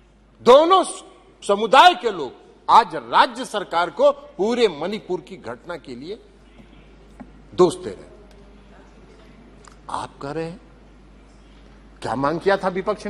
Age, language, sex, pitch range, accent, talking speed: 60-79, Hindi, male, 200-300 Hz, native, 125 wpm